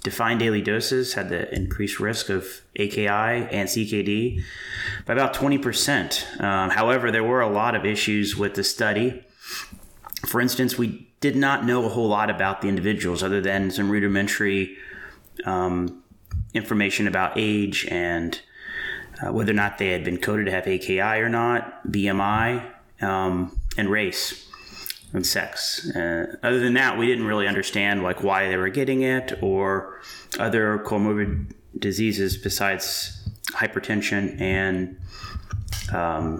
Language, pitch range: English, 95-120 Hz